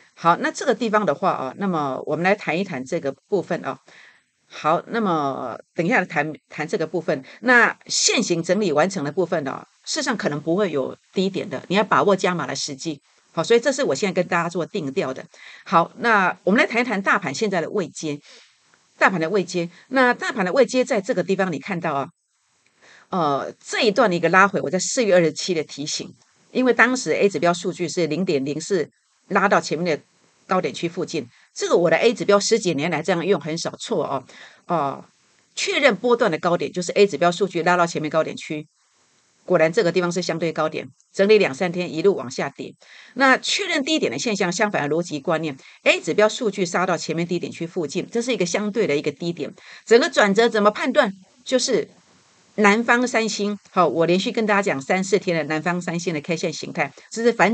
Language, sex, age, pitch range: Chinese, female, 50-69, 165-215 Hz